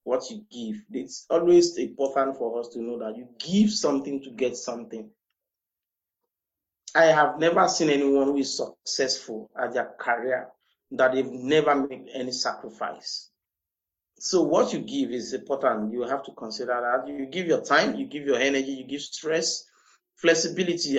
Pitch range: 130-185 Hz